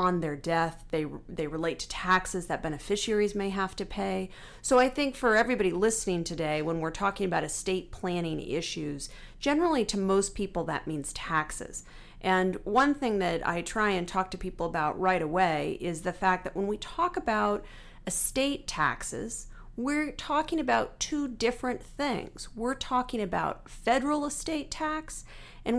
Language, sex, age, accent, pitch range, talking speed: English, female, 40-59, American, 170-240 Hz, 165 wpm